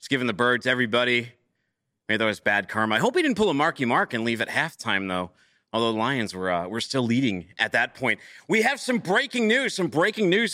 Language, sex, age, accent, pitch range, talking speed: English, male, 30-49, American, 130-190 Hz, 245 wpm